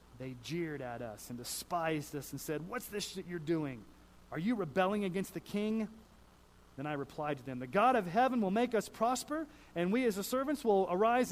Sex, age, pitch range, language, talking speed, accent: male, 30-49, 145-235 Hz, English, 210 wpm, American